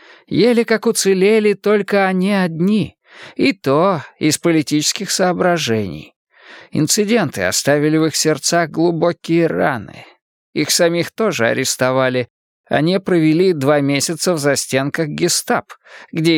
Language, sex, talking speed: English, male, 110 wpm